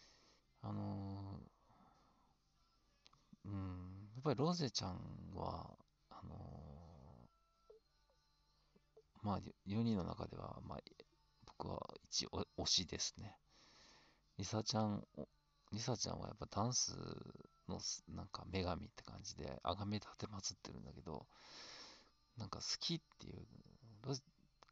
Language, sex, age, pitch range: Japanese, male, 40-59, 90-115 Hz